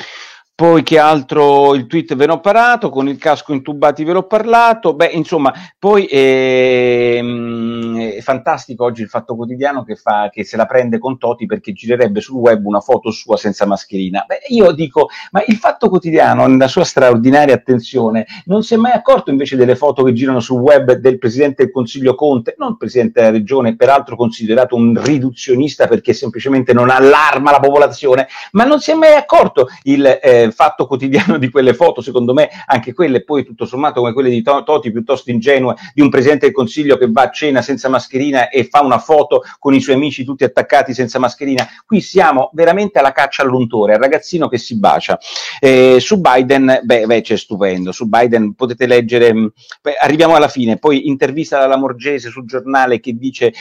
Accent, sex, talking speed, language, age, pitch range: native, male, 190 wpm, Italian, 50-69, 120-150 Hz